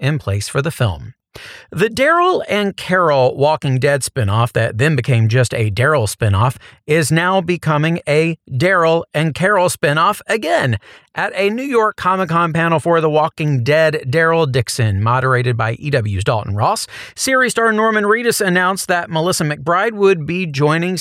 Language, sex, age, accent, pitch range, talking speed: English, male, 40-59, American, 125-175 Hz, 160 wpm